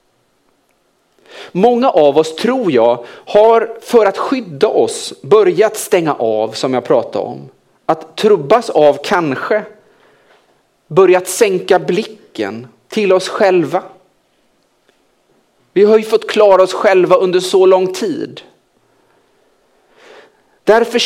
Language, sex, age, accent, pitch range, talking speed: Swedish, male, 40-59, Norwegian, 175-245 Hz, 110 wpm